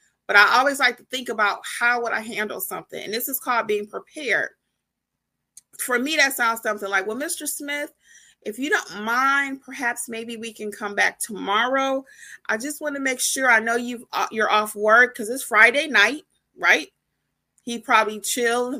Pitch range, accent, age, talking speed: 215-275 Hz, American, 30-49, 185 wpm